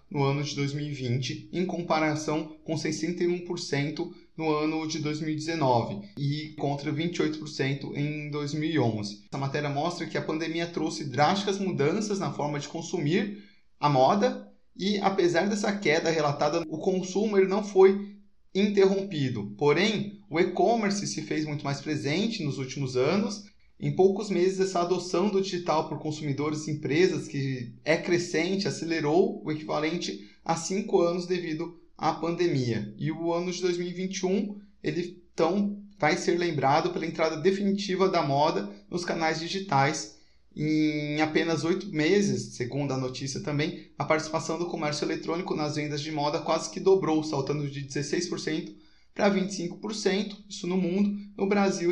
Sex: male